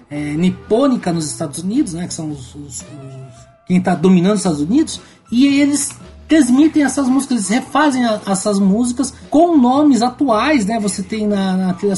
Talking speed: 175 wpm